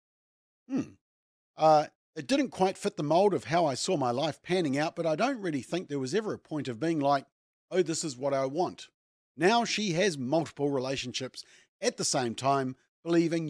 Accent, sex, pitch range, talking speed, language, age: Australian, male, 120-165 Hz, 200 wpm, English, 40-59